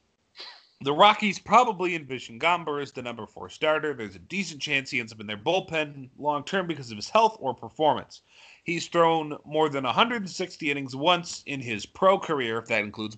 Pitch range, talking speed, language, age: 130-175 Hz, 190 wpm, English, 30-49